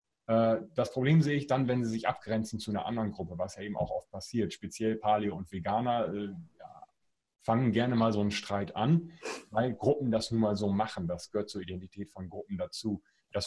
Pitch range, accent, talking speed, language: 105-130 Hz, German, 205 wpm, German